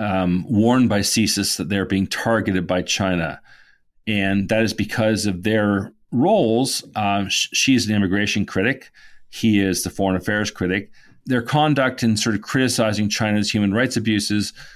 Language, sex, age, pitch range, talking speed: English, male, 40-59, 100-120 Hz, 155 wpm